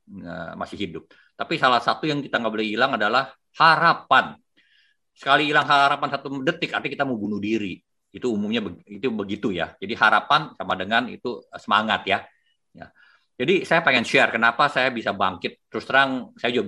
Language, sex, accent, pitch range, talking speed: Indonesian, male, native, 100-140 Hz, 175 wpm